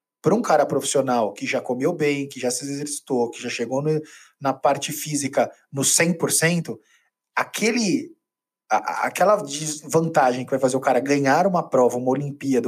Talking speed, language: 150 wpm, Portuguese